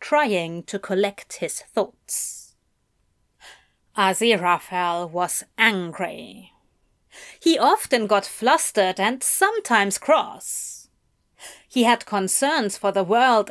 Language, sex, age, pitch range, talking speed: English, female, 30-49, 200-295 Hz, 95 wpm